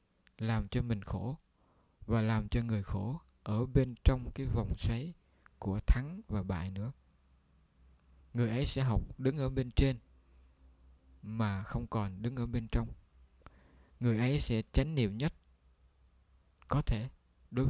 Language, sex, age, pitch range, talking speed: Vietnamese, male, 20-39, 90-120 Hz, 150 wpm